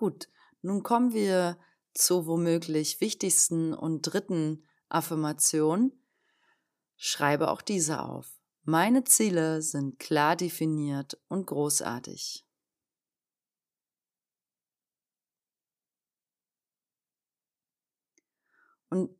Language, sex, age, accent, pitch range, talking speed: German, female, 30-49, German, 160-210 Hz, 70 wpm